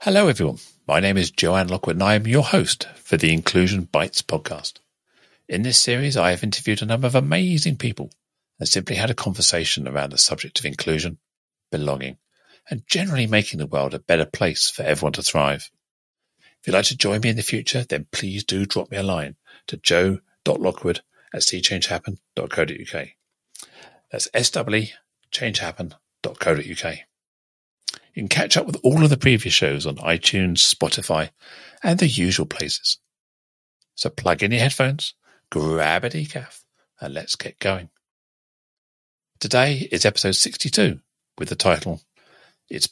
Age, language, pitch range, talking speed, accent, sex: 40-59, English, 85-125 Hz, 155 wpm, British, male